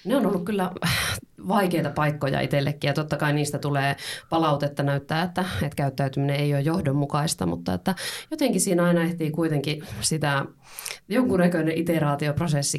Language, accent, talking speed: Finnish, native, 140 wpm